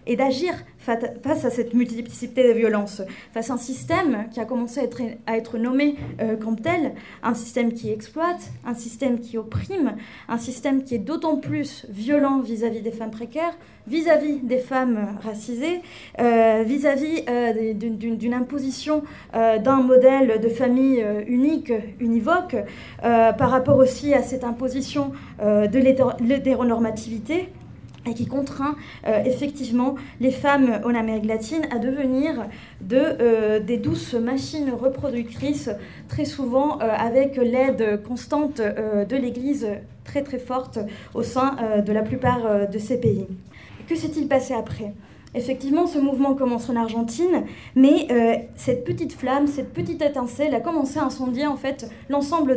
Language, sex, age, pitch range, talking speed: French, female, 20-39, 225-275 Hz, 150 wpm